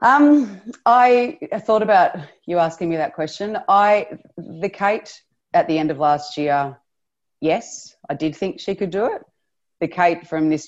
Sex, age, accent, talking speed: female, 30-49, Australian, 170 wpm